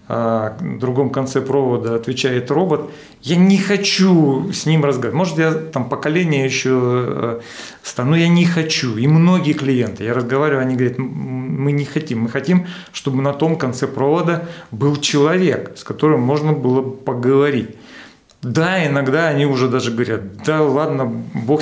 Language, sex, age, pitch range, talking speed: Russian, male, 40-59, 120-150 Hz, 155 wpm